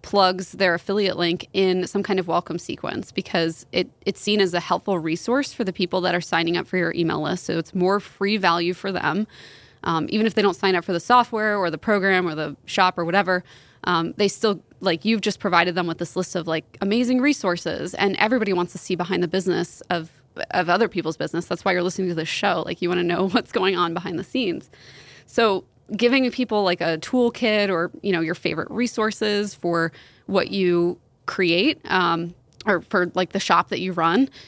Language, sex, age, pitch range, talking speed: English, female, 20-39, 170-200 Hz, 215 wpm